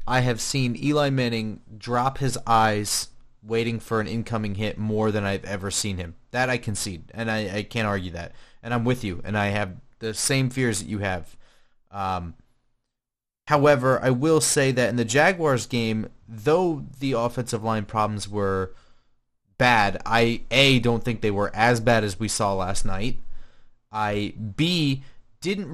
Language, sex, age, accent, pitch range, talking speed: English, male, 30-49, American, 105-130 Hz, 175 wpm